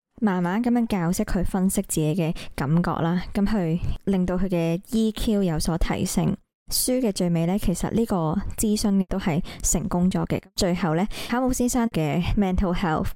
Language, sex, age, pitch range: Chinese, male, 20-39, 170-210 Hz